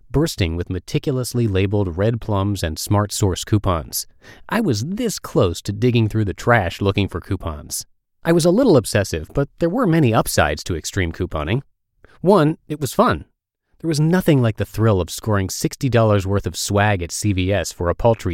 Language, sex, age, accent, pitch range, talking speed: English, male, 30-49, American, 95-125 Hz, 185 wpm